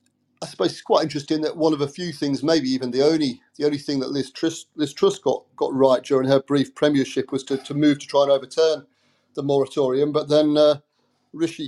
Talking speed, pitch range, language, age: 220 wpm, 130-150 Hz, English, 40-59